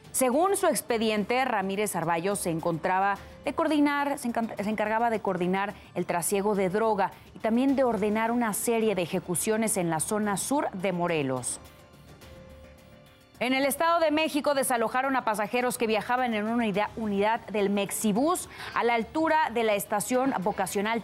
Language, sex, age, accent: Spanish, female, 30-49, Mexican